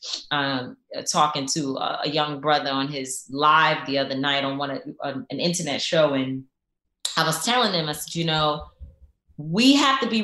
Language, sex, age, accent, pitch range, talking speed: English, female, 20-39, American, 150-220 Hz, 180 wpm